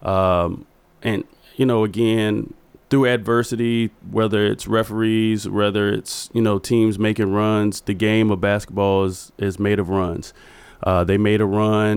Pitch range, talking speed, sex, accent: 95-110 Hz, 155 wpm, male, American